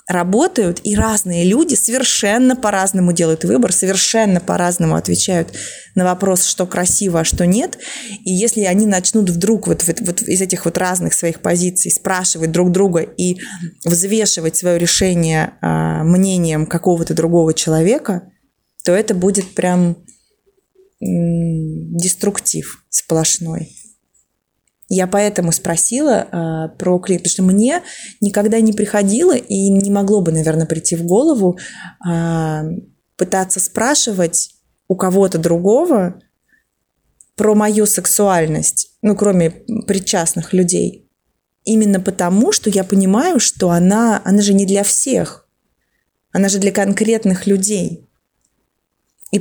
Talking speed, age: 120 wpm, 20-39